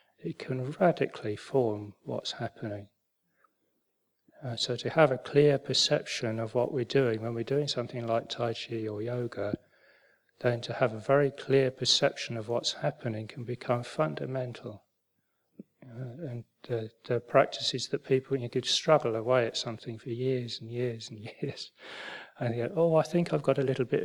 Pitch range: 115-140 Hz